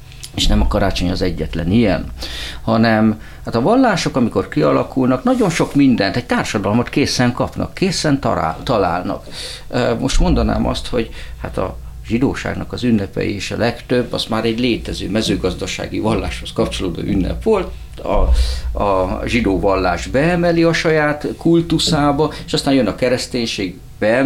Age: 50-69